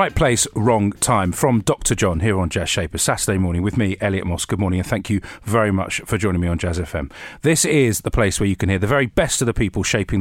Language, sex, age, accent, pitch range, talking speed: English, male, 40-59, British, 90-120 Hz, 265 wpm